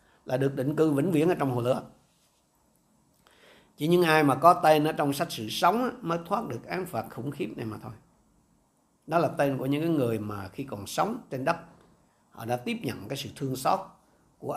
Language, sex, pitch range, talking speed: Vietnamese, male, 125-165 Hz, 215 wpm